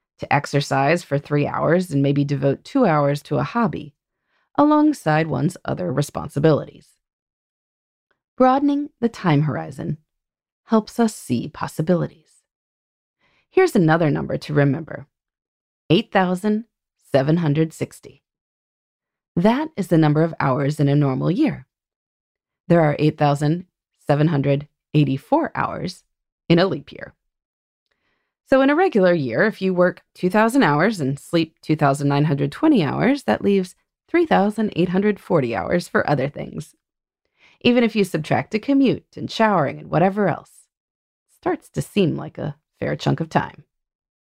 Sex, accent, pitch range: female, American, 145-220 Hz